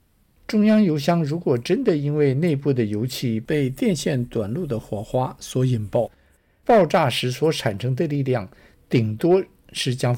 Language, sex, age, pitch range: Chinese, male, 60-79, 120-165 Hz